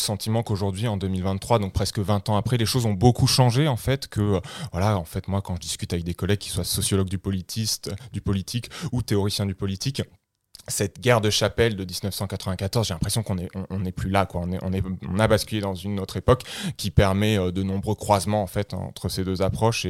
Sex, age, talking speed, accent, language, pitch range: male, 20-39, 225 wpm, French, French, 95-120 Hz